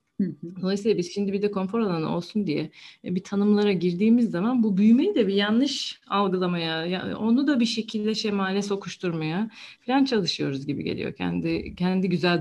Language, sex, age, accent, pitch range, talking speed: Turkish, female, 40-59, native, 160-220 Hz, 155 wpm